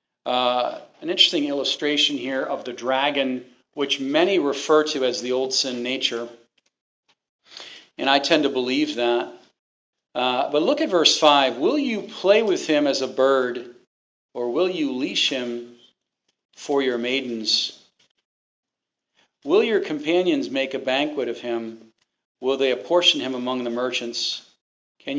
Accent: American